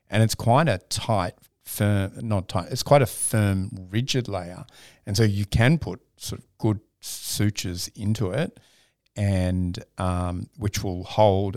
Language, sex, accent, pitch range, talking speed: English, male, Australian, 90-115 Hz, 155 wpm